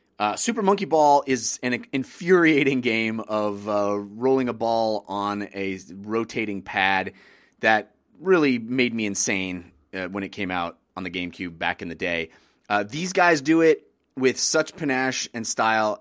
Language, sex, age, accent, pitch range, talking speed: English, male, 30-49, American, 100-130 Hz, 165 wpm